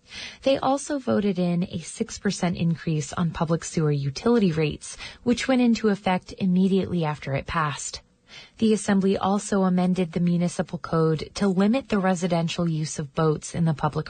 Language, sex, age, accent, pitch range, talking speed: English, female, 20-39, American, 165-210 Hz, 160 wpm